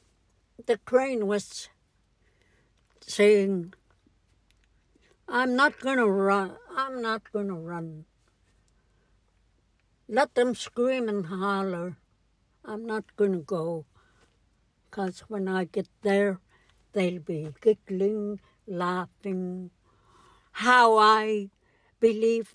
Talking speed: 90 wpm